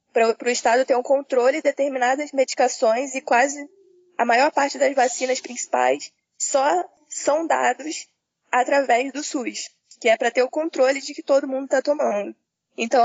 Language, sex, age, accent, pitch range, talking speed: Portuguese, female, 10-29, Brazilian, 235-285 Hz, 165 wpm